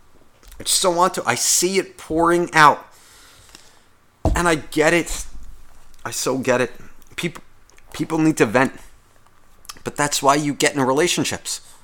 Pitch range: 105-155 Hz